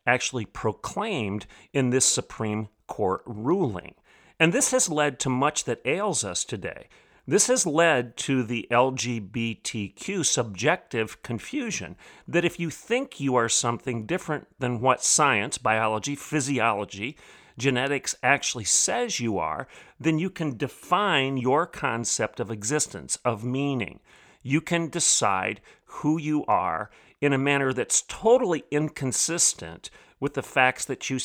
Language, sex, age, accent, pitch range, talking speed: English, male, 40-59, American, 115-155 Hz, 135 wpm